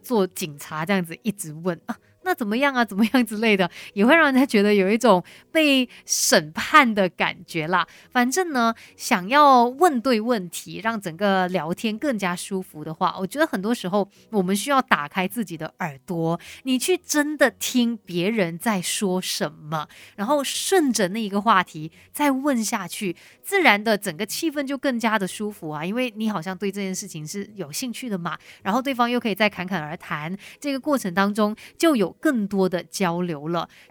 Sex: female